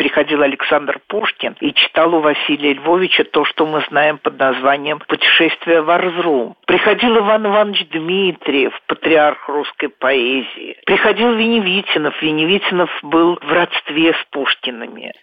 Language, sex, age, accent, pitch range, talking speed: Russian, male, 50-69, native, 155-225 Hz, 125 wpm